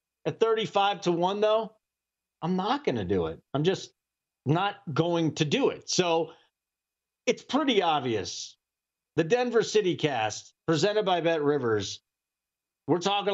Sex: male